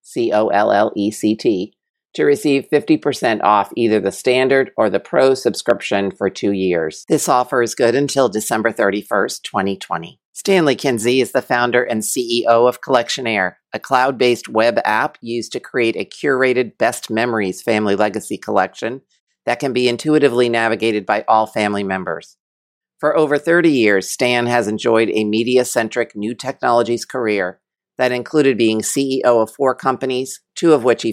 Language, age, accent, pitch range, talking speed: English, 50-69, American, 110-130 Hz, 150 wpm